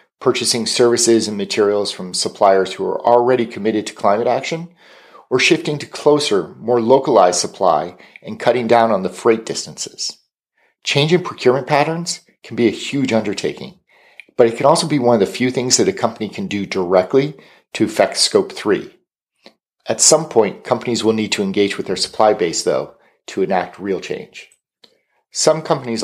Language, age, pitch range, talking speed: English, 50-69, 110-140 Hz, 175 wpm